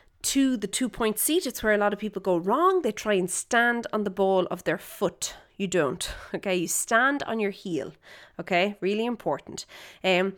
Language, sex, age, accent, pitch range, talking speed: English, female, 30-49, Irish, 185-255 Hz, 195 wpm